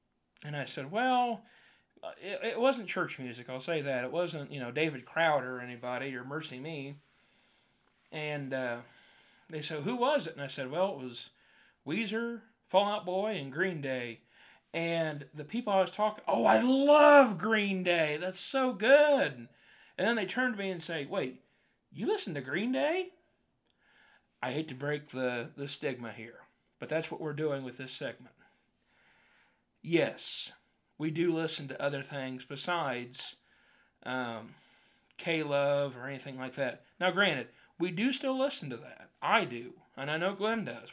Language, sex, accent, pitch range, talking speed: English, male, American, 135-200 Hz, 170 wpm